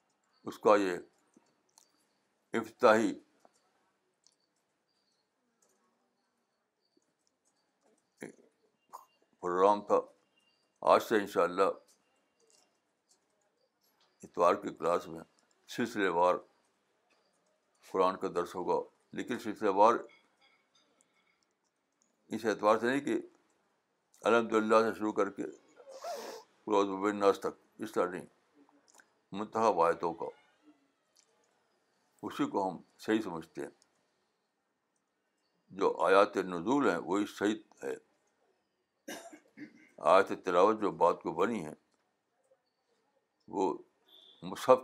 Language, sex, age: Urdu, male, 60-79